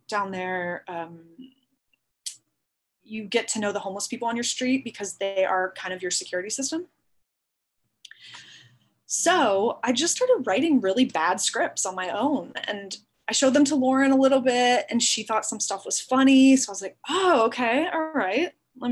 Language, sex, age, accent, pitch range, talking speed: English, female, 20-39, American, 190-255 Hz, 180 wpm